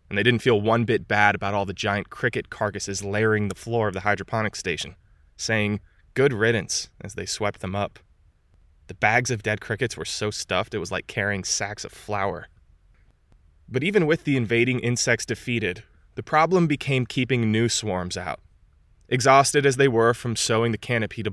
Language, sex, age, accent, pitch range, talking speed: English, male, 20-39, American, 100-120 Hz, 185 wpm